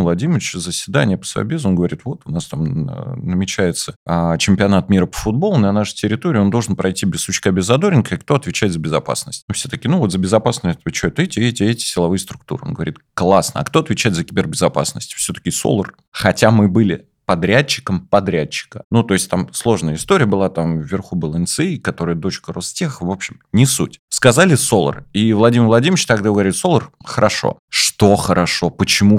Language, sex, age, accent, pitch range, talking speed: Russian, male, 20-39, native, 90-115 Hz, 185 wpm